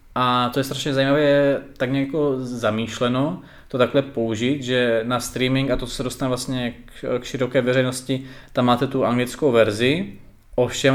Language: Czech